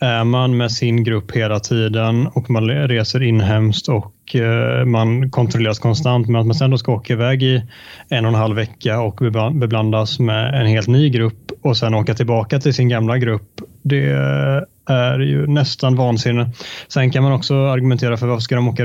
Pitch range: 115-125 Hz